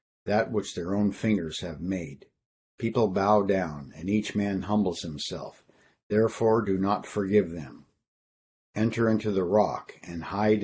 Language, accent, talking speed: English, American, 145 wpm